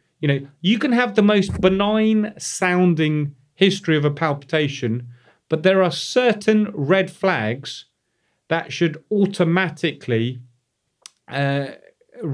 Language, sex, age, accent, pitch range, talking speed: English, male, 30-49, British, 140-180 Hz, 105 wpm